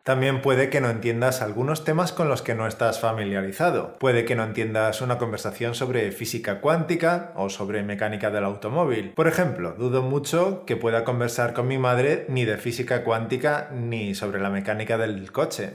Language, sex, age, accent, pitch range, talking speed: Spanish, male, 20-39, Spanish, 110-150 Hz, 180 wpm